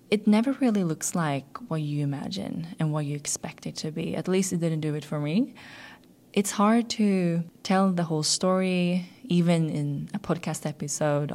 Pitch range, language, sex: 150-185 Hz, English, female